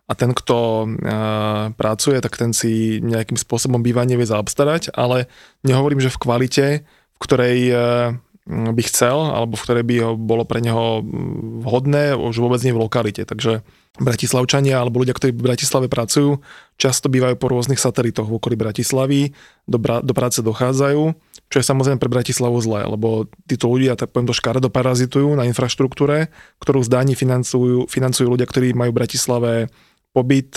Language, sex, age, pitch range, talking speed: Slovak, male, 20-39, 115-135 Hz, 160 wpm